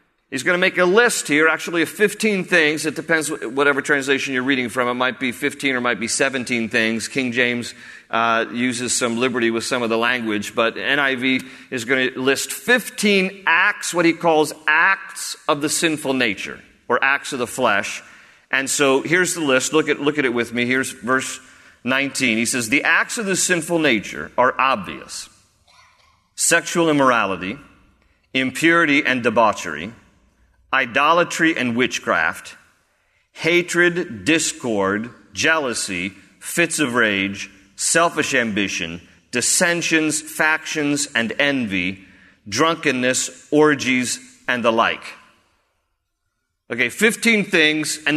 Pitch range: 120-165 Hz